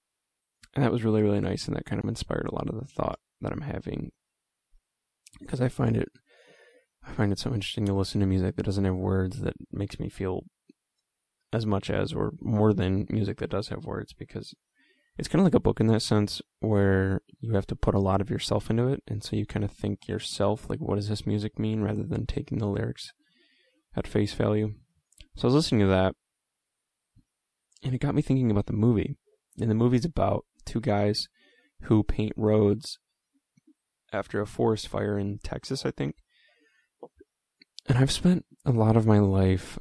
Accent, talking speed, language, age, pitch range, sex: American, 195 wpm, English, 10-29, 100-125 Hz, male